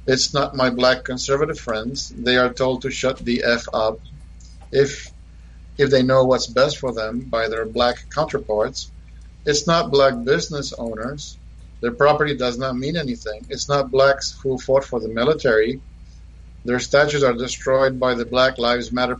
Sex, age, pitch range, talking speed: male, 50-69, 115-145 Hz, 170 wpm